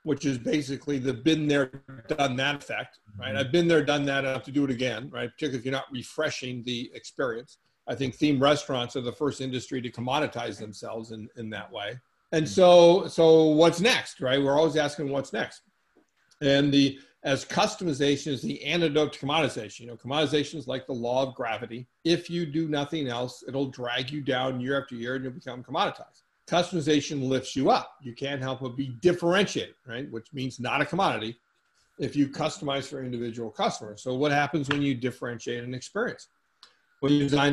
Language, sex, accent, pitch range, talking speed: English, male, American, 125-150 Hz, 195 wpm